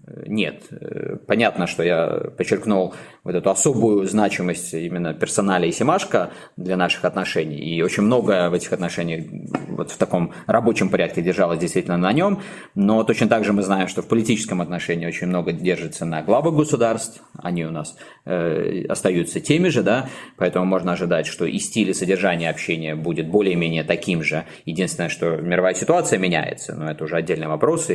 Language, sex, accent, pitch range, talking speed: Russian, male, native, 85-105 Hz, 165 wpm